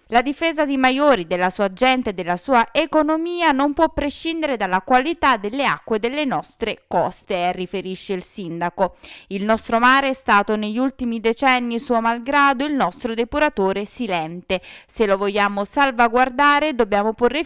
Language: Italian